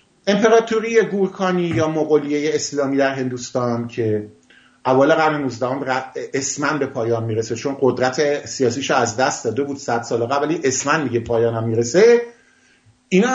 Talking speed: 140 wpm